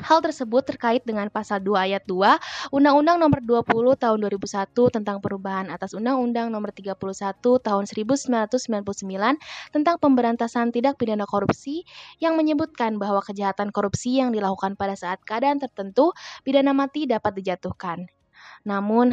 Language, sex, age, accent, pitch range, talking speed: Indonesian, female, 20-39, native, 200-255 Hz, 130 wpm